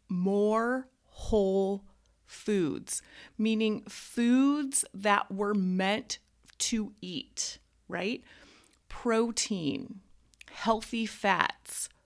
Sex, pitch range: female, 195-250 Hz